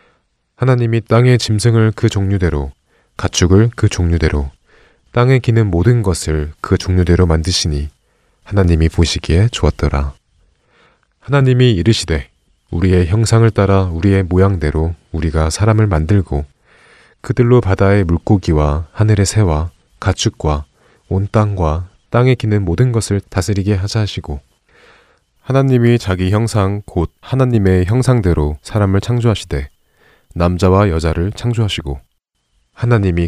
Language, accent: Korean, native